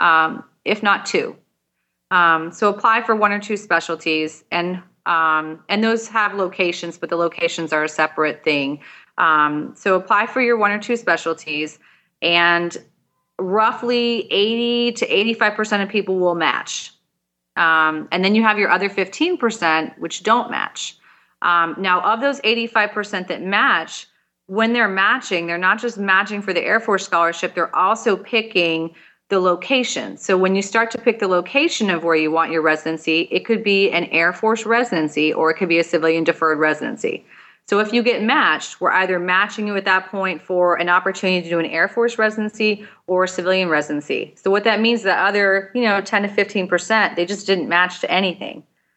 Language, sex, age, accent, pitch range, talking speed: English, female, 30-49, American, 170-210 Hz, 180 wpm